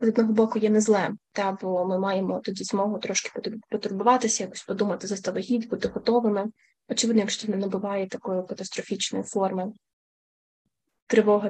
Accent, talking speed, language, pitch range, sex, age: native, 145 wpm, Ukrainian, 200-230 Hz, female, 20-39